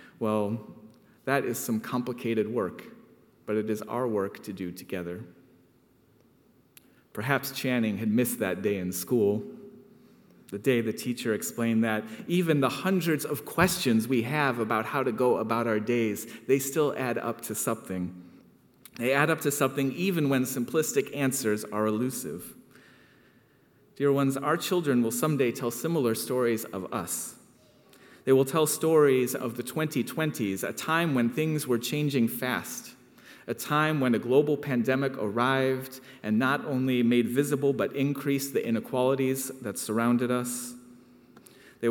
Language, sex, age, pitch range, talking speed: English, male, 30-49, 115-140 Hz, 150 wpm